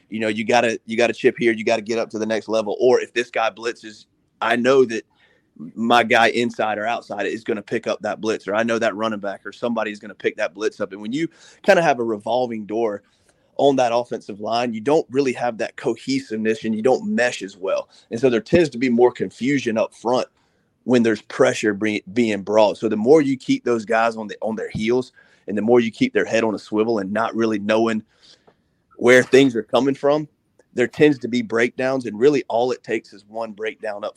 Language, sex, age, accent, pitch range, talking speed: English, male, 30-49, American, 110-120 Hz, 235 wpm